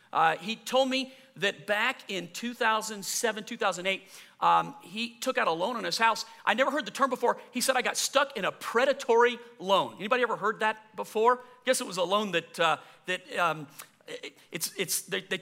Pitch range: 185-240 Hz